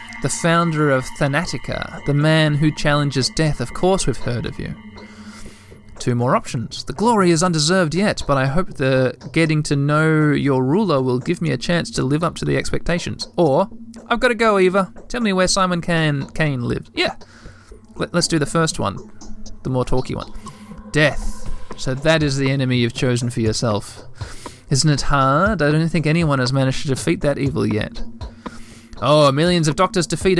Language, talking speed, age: English, 185 wpm, 20-39